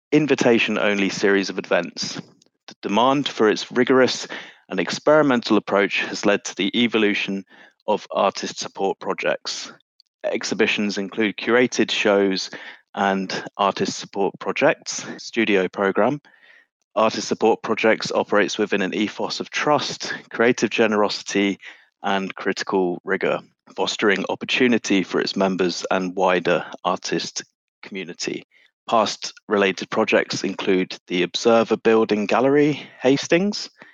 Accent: British